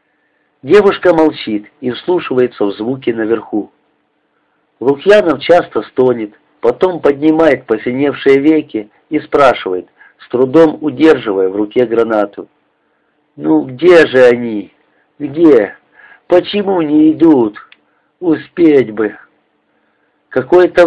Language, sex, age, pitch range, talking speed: Russian, male, 50-69, 120-170 Hz, 95 wpm